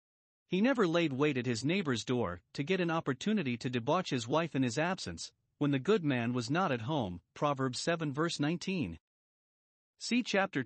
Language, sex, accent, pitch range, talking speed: English, male, American, 125-175 Hz, 185 wpm